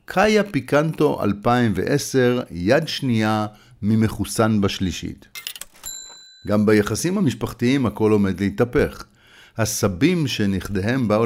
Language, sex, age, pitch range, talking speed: Hebrew, male, 50-69, 100-135 Hz, 85 wpm